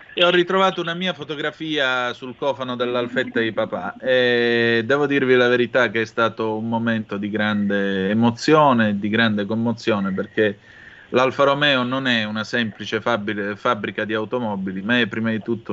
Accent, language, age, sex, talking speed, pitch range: native, Italian, 30-49, male, 165 wpm, 110-145 Hz